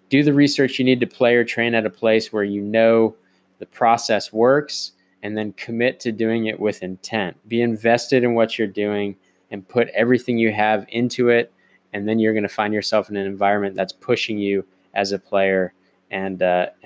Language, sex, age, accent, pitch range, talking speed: English, male, 20-39, American, 100-120 Hz, 205 wpm